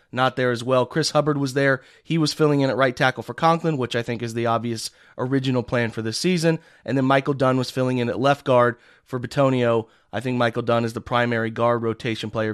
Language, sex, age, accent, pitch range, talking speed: English, male, 30-49, American, 115-140 Hz, 240 wpm